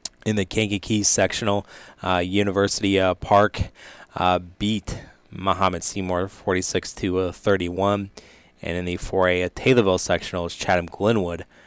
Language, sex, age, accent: English, male, 20-39, American